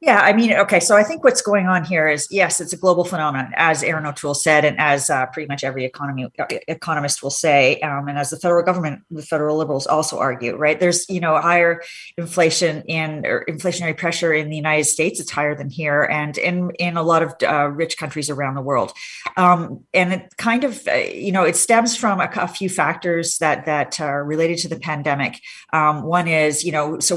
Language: English